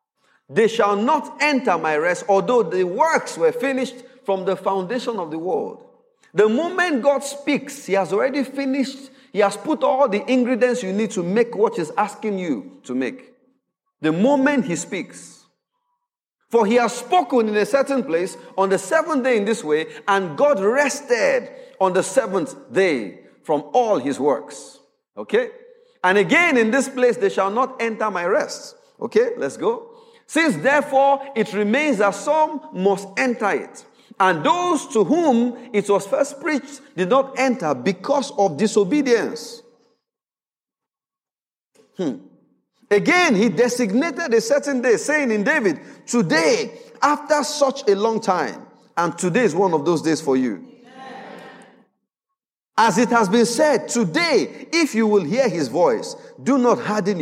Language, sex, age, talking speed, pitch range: English, male, 40-59, 155 wpm, 210-285 Hz